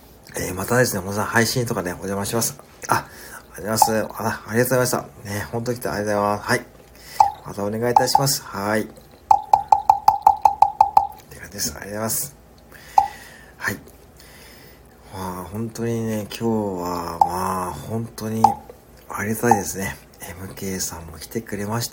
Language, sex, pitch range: Japanese, male, 100-155 Hz